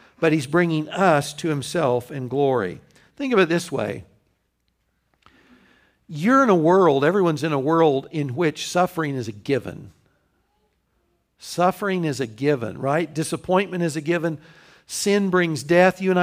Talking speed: 150 wpm